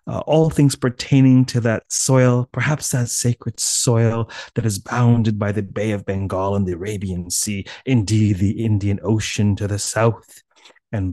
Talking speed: 165 wpm